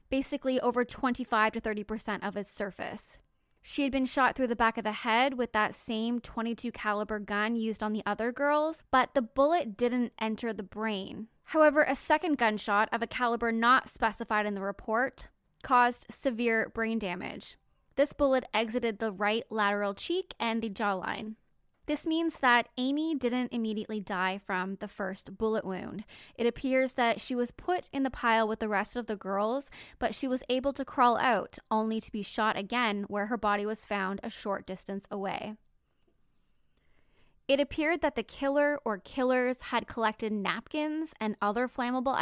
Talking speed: 175 wpm